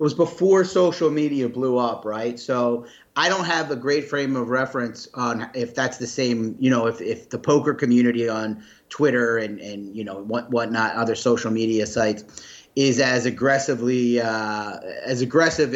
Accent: American